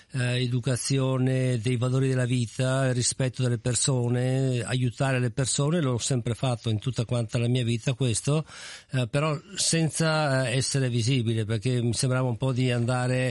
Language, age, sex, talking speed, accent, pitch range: Italian, 50-69, male, 150 wpm, native, 120-135 Hz